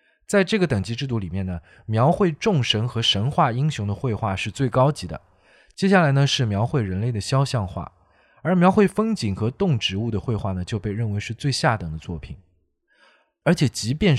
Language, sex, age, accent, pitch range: Chinese, male, 20-39, native, 95-145 Hz